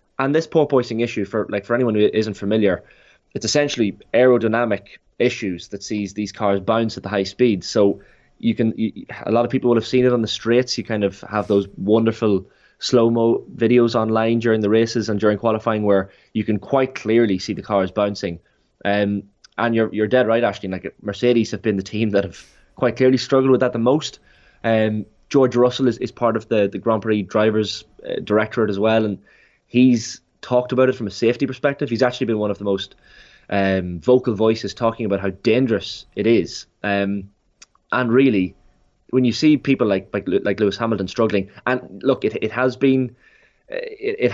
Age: 20-39